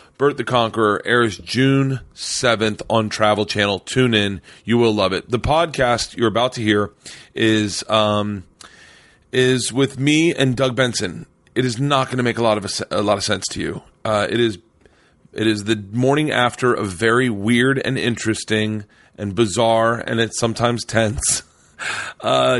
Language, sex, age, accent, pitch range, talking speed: English, male, 30-49, American, 110-130 Hz, 175 wpm